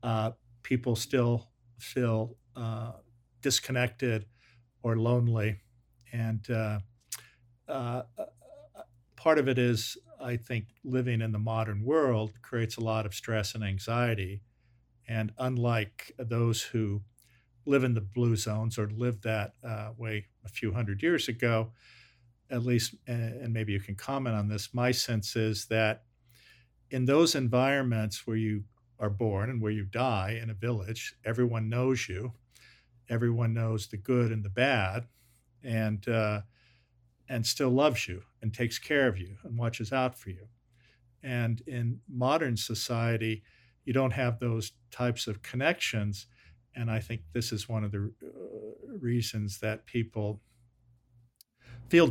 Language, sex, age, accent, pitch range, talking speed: English, male, 50-69, American, 110-120 Hz, 145 wpm